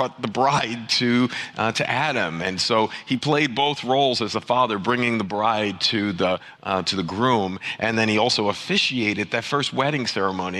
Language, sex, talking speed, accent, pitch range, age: English, male, 195 wpm, American, 100-125 Hz, 40-59